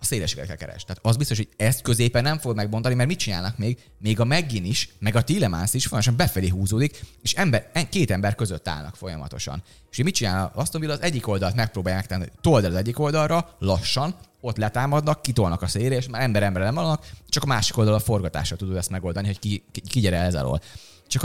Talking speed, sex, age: 215 wpm, male, 30-49